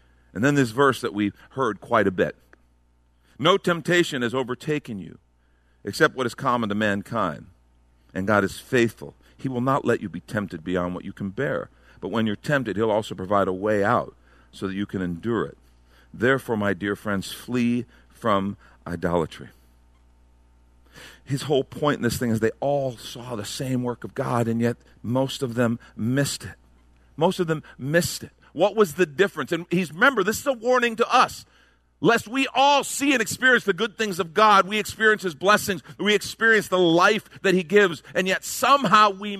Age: 50-69